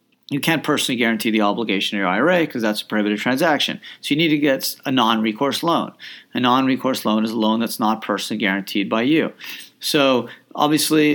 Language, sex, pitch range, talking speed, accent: English, male, 110-145 Hz, 195 wpm, American